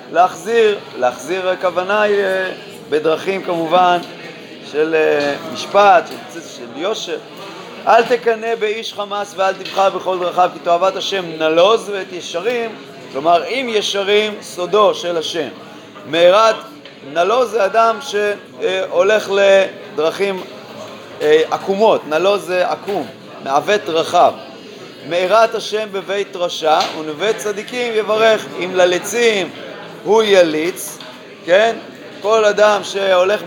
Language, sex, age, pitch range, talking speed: Hebrew, male, 30-49, 180-225 Hz, 100 wpm